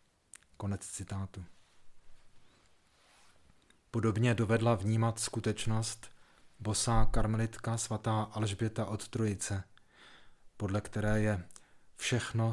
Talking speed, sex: 75 wpm, male